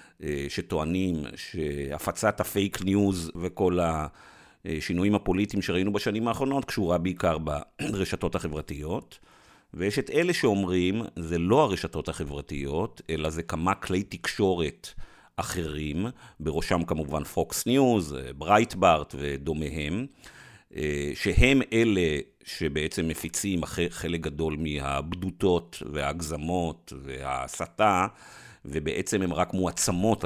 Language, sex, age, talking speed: Hebrew, male, 50-69, 95 wpm